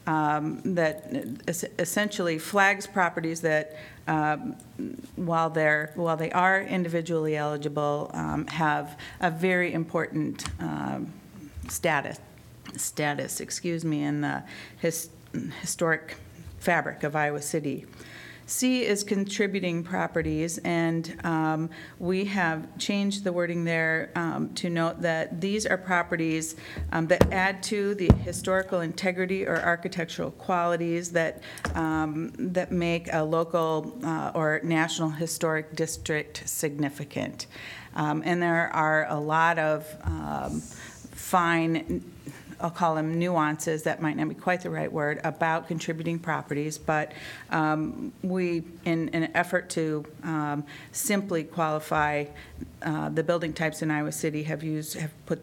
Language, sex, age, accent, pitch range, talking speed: English, female, 40-59, American, 155-175 Hz, 130 wpm